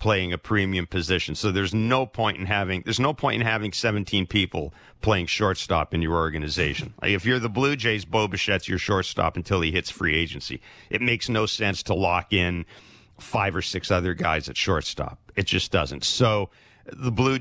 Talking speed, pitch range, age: 195 wpm, 90-115 Hz, 50-69